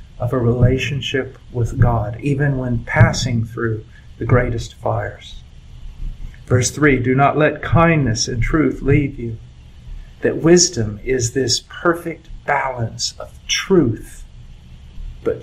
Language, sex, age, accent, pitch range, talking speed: English, male, 50-69, American, 110-140 Hz, 120 wpm